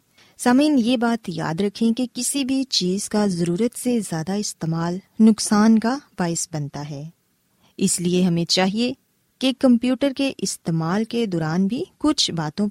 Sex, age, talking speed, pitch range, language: female, 20-39, 150 wpm, 170-240 Hz, Urdu